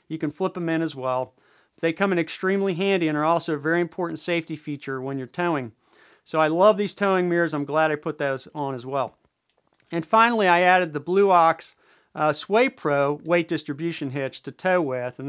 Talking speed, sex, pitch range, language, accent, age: 210 wpm, male, 150-195 Hz, English, American, 40-59